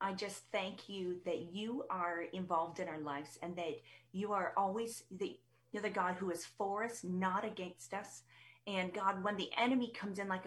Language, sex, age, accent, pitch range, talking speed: English, female, 30-49, American, 180-225 Hz, 195 wpm